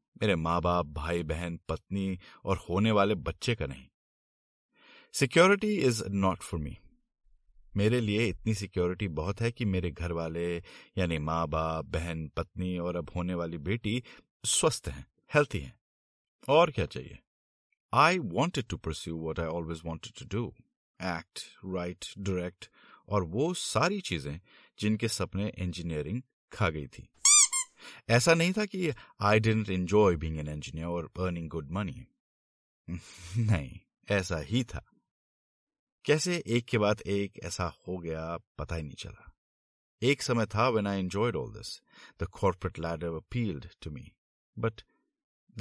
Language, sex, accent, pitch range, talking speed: Hindi, male, native, 85-110 Hz, 145 wpm